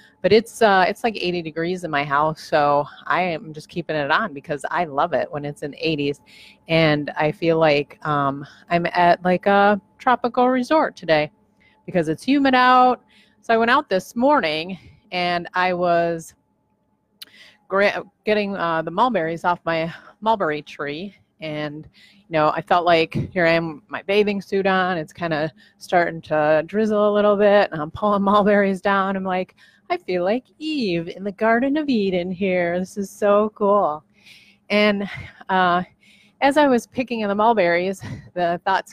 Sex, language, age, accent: female, English, 30-49, American